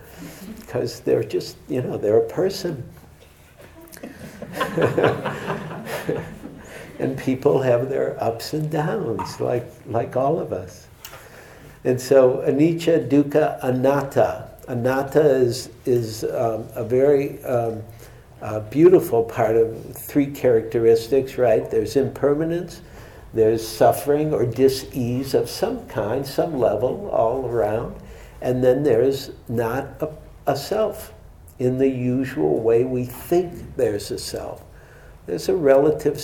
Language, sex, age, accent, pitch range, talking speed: English, male, 60-79, American, 120-145 Hz, 120 wpm